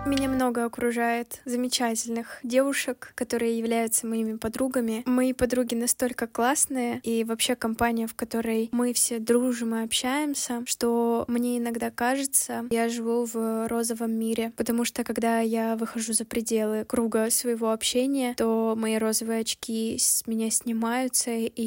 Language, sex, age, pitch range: Russian, female, 10-29, 230-250 Hz